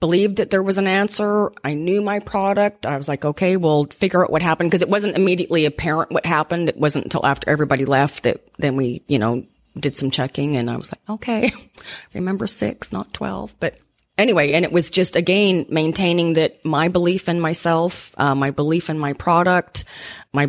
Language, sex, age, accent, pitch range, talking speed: English, female, 30-49, American, 140-175 Hz, 200 wpm